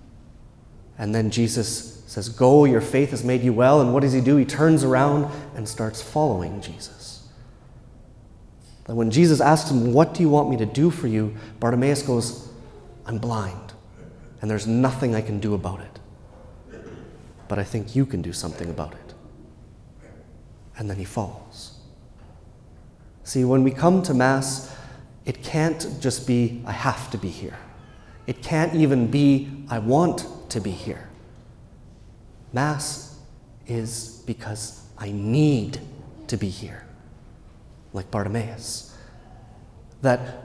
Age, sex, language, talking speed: 30-49, male, English, 145 wpm